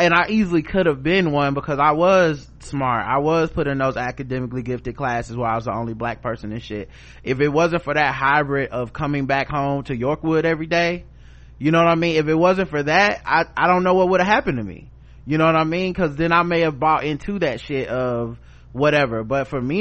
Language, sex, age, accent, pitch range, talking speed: English, male, 20-39, American, 125-160 Hz, 245 wpm